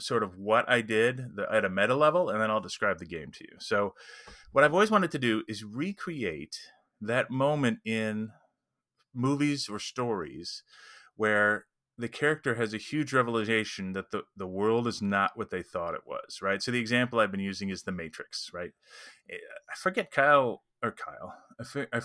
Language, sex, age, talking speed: English, male, 30-49, 180 wpm